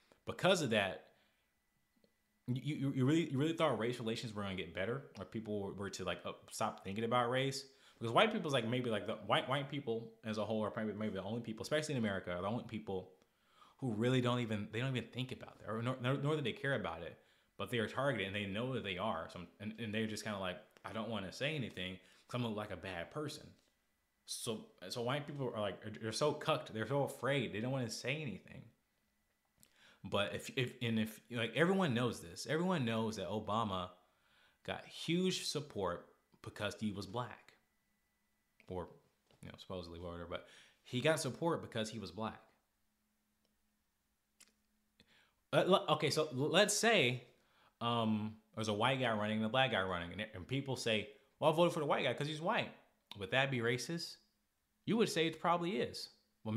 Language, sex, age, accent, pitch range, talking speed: English, male, 20-39, American, 105-140 Hz, 205 wpm